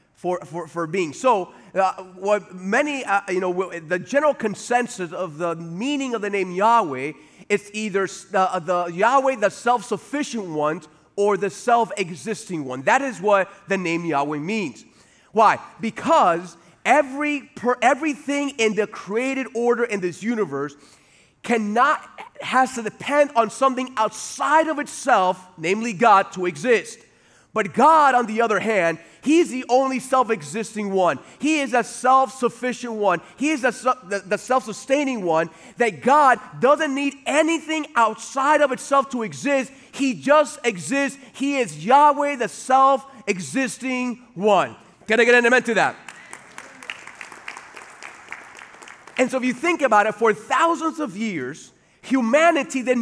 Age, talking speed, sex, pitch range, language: 30-49, 145 wpm, male, 195-270 Hz, English